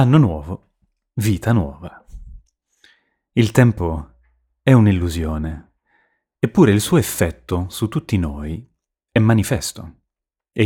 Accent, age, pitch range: native, 30-49, 80-115 Hz